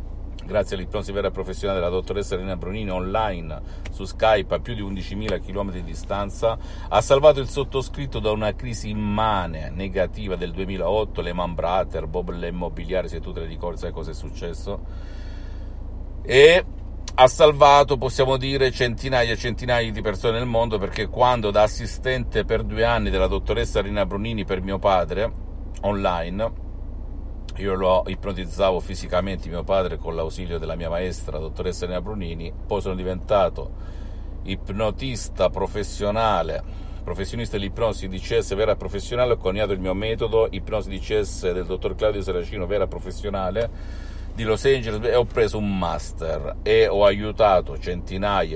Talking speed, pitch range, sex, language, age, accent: 145 wpm, 85-105 Hz, male, Italian, 50-69, native